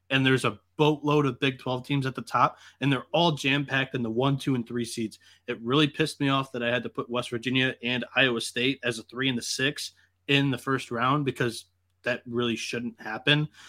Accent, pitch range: American, 115-135 Hz